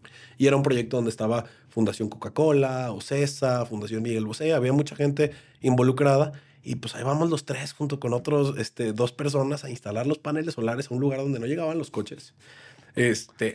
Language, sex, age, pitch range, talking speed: Spanish, male, 30-49, 115-145 Hz, 190 wpm